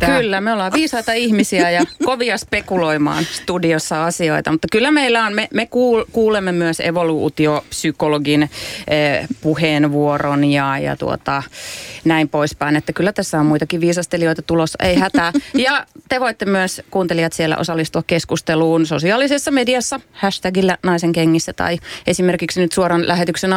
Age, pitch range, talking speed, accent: 30-49, 165-225 Hz, 135 wpm, native